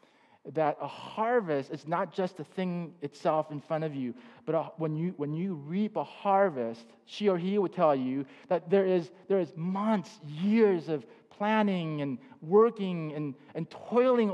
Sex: male